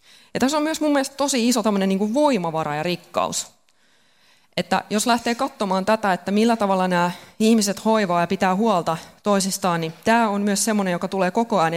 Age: 20-39